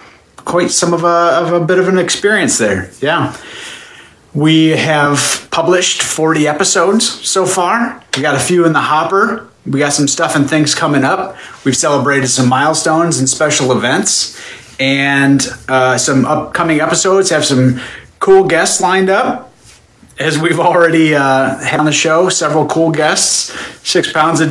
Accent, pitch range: American, 130-160 Hz